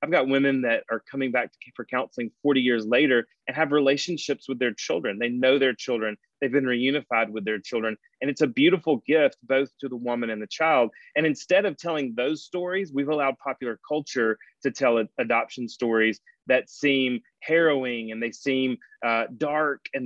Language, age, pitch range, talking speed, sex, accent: English, 30-49, 120-150 Hz, 190 wpm, male, American